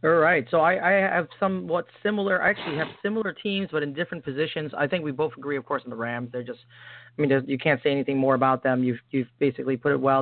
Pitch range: 135-165 Hz